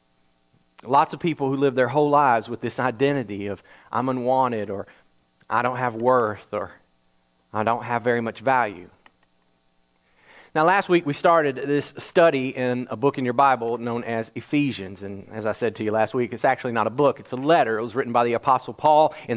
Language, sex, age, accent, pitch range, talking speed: English, male, 40-59, American, 115-175 Hz, 205 wpm